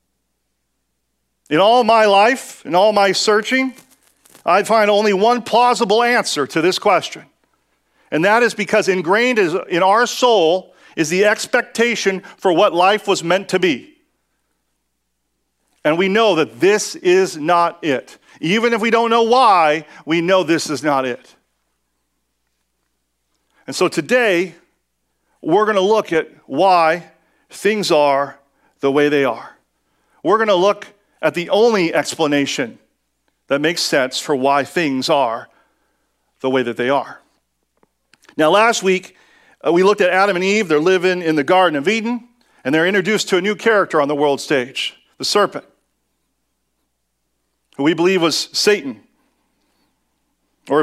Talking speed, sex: 150 wpm, male